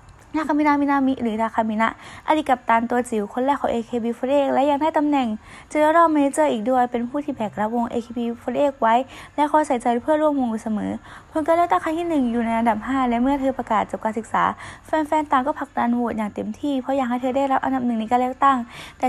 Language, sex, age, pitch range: Thai, female, 20-39, 230-280 Hz